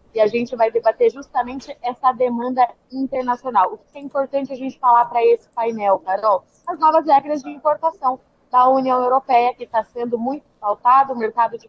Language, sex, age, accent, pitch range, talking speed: Portuguese, female, 20-39, Brazilian, 225-270 Hz, 185 wpm